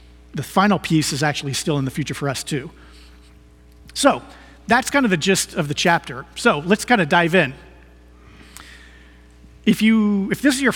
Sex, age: male, 40-59